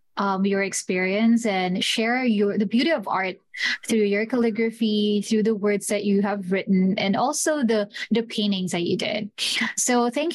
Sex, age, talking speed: female, 20-39, 175 wpm